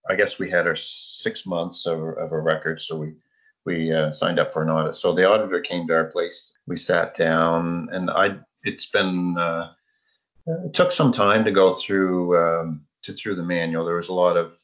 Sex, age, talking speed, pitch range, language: male, 30-49, 210 wpm, 80-95 Hz, English